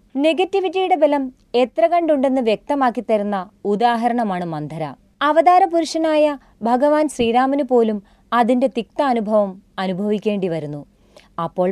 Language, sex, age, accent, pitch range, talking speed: Malayalam, female, 30-49, native, 210-305 Hz, 95 wpm